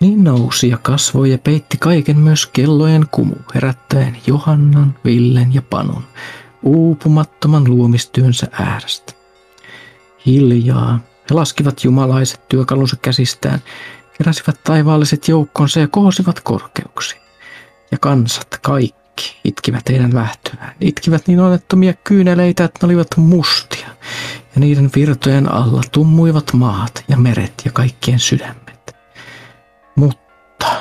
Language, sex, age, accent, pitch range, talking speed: Finnish, male, 50-69, native, 125-155 Hz, 110 wpm